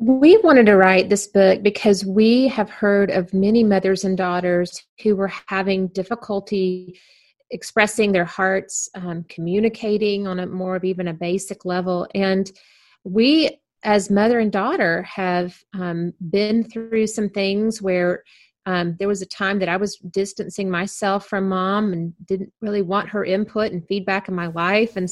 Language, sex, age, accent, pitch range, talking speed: English, female, 30-49, American, 180-210 Hz, 165 wpm